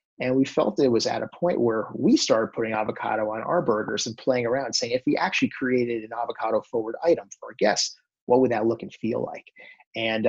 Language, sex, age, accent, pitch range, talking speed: English, male, 30-49, American, 110-135 Hz, 225 wpm